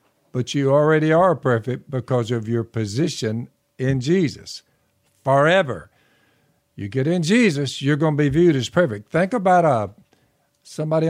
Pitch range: 110-145 Hz